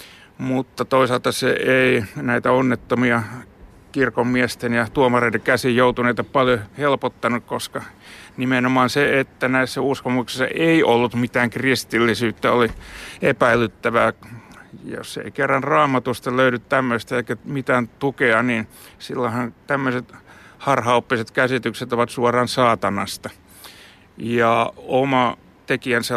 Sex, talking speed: male, 105 wpm